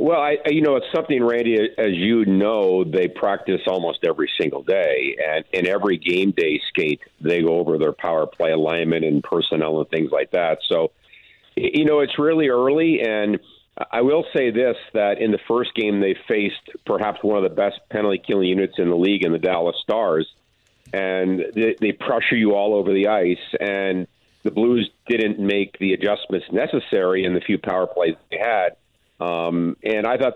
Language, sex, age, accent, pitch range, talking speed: English, male, 50-69, American, 95-130 Hz, 185 wpm